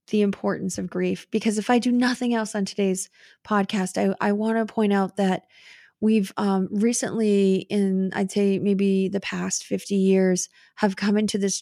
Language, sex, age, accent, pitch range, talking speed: English, female, 20-39, American, 185-220 Hz, 180 wpm